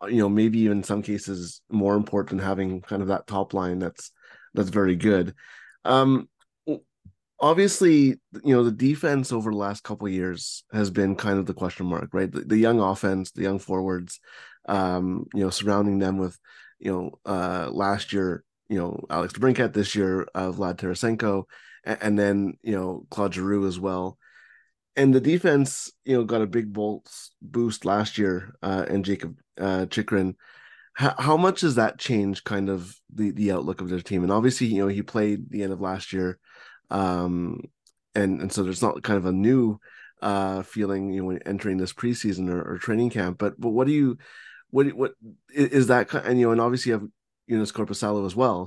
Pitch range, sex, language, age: 95-115 Hz, male, English, 20-39